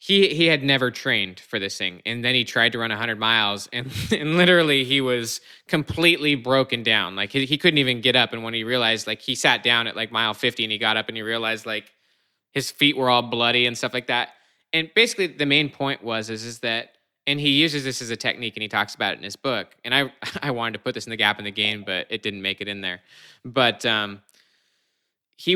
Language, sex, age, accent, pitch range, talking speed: English, male, 20-39, American, 110-135 Hz, 250 wpm